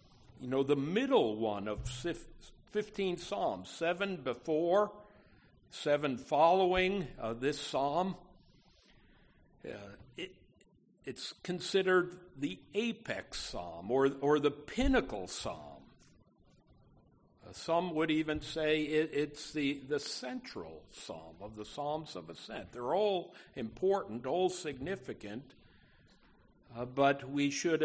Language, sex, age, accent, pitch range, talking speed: English, male, 60-79, American, 135-180 Hz, 110 wpm